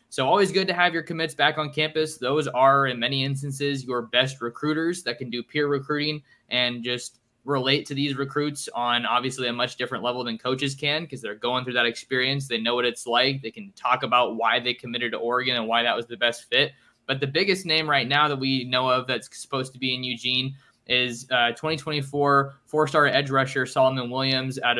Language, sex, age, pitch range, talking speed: English, male, 20-39, 125-140 Hz, 220 wpm